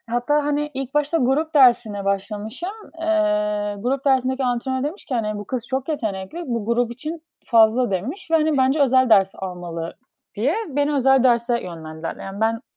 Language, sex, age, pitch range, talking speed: Turkish, female, 30-49, 195-255 Hz, 170 wpm